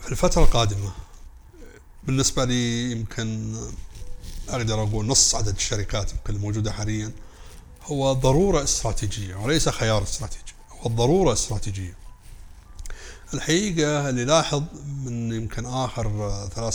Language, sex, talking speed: Arabic, male, 100 wpm